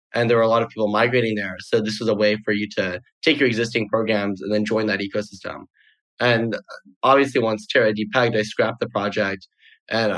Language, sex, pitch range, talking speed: English, male, 105-125 Hz, 210 wpm